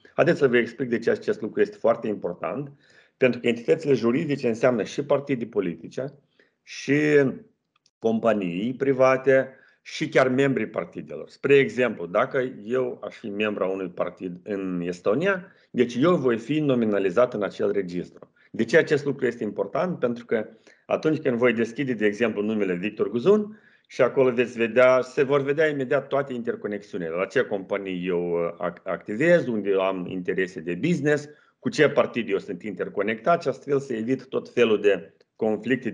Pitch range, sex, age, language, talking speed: 105-140 Hz, male, 40-59, Romanian, 165 wpm